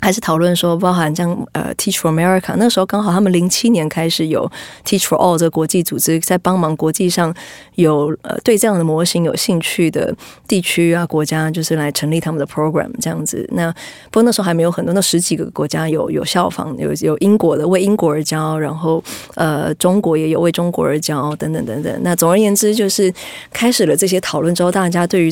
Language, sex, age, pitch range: Chinese, female, 20-39, 160-185 Hz